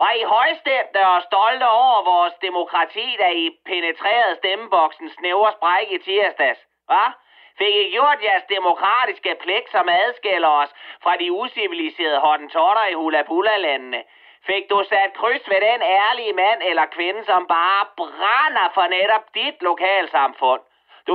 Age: 30-49